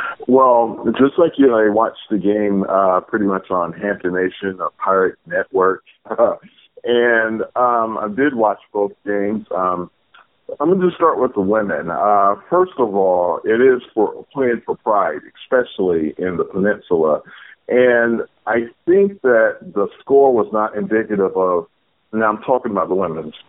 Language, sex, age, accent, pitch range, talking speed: English, male, 50-69, American, 100-130 Hz, 160 wpm